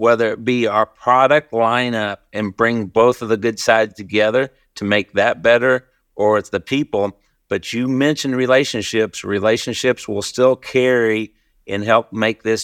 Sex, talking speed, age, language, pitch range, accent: male, 160 wpm, 50-69, English, 100-120 Hz, American